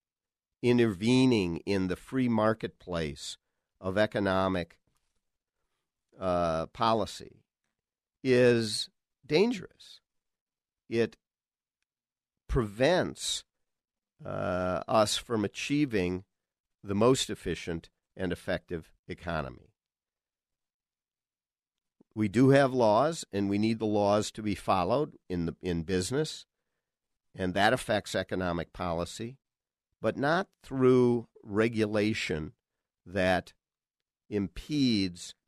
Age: 50-69